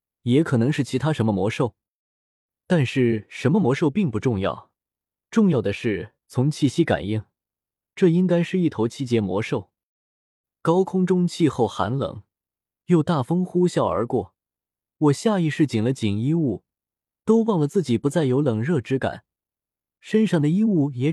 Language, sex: Chinese, male